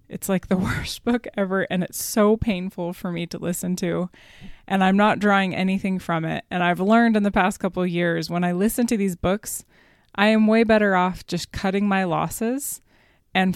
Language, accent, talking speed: English, American, 205 wpm